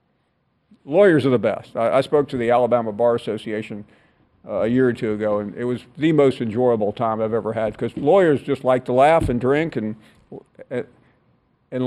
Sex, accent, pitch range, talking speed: male, American, 115-140 Hz, 190 wpm